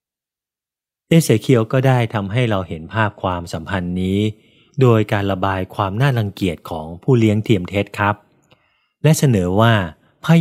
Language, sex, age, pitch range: Thai, male, 20-39, 95-120 Hz